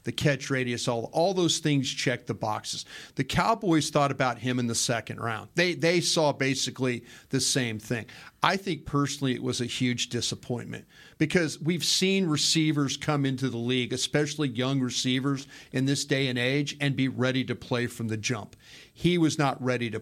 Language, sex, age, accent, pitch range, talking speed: English, male, 40-59, American, 125-150 Hz, 190 wpm